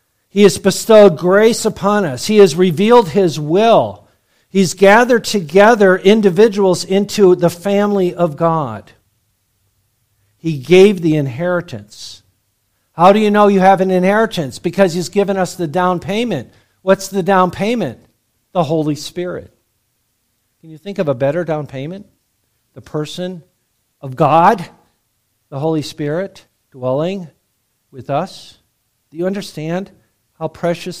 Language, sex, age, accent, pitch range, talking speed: English, male, 50-69, American, 125-185 Hz, 135 wpm